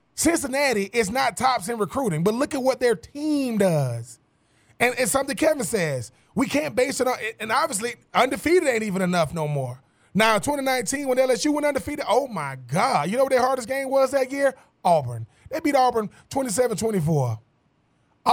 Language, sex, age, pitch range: English, male, 20-39, 205-275 Hz